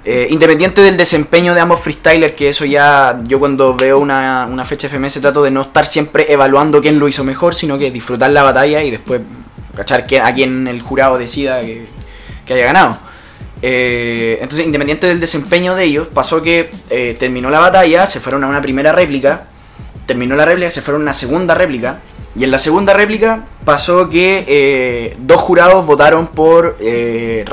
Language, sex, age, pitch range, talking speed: Spanish, male, 20-39, 135-170 Hz, 185 wpm